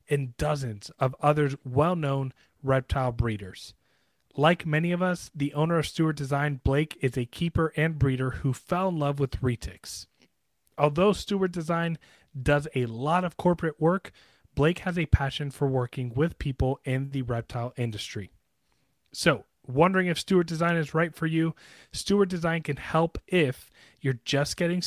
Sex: male